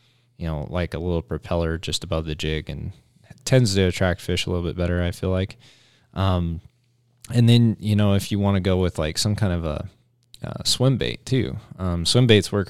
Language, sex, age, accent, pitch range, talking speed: English, male, 20-39, American, 85-110 Hz, 215 wpm